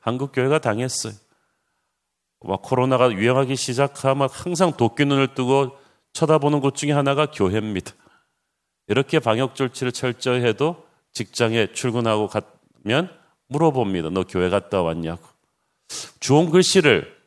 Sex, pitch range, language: male, 115-155 Hz, Korean